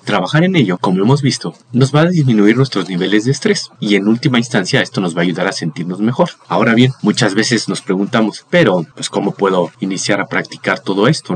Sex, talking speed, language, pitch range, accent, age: male, 215 wpm, Spanish, 100-145 Hz, Mexican, 40-59